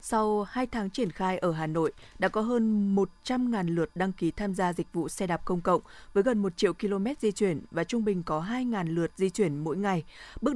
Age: 20-39